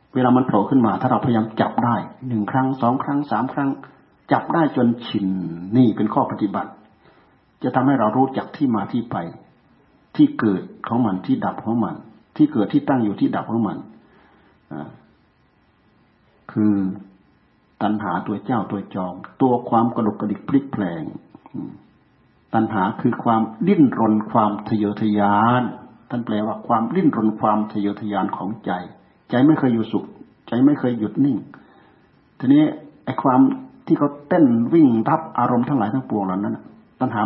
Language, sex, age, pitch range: Thai, male, 60-79, 110-150 Hz